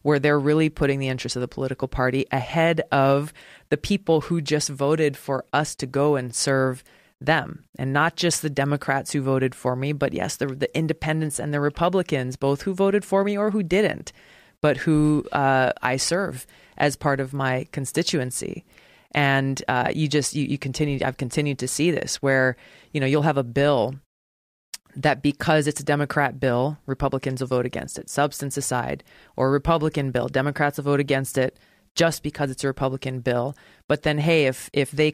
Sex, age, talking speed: female, 20-39, 190 wpm